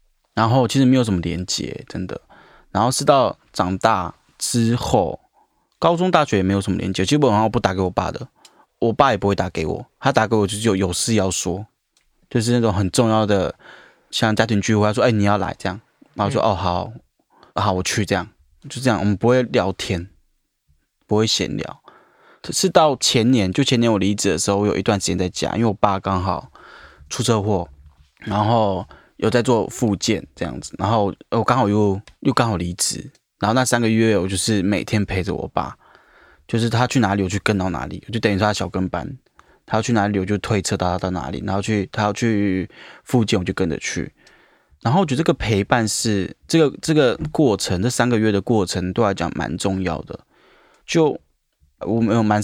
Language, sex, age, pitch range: Chinese, male, 20-39, 95-115 Hz